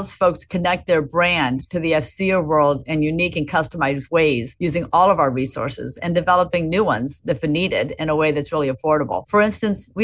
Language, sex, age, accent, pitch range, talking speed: English, female, 30-49, American, 145-170 Hz, 195 wpm